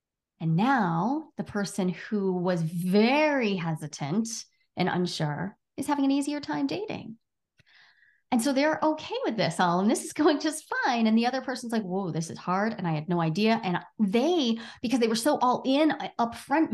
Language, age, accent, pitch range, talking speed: English, 30-49, American, 195-270 Hz, 185 wpm